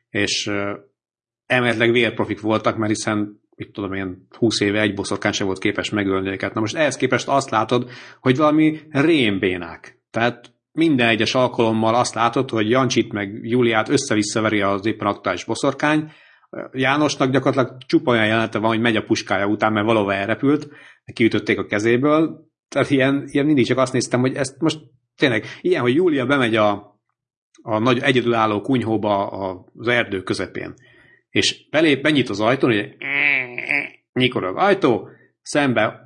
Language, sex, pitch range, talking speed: Hungarian, male, 110-130 Hz, 150 wpm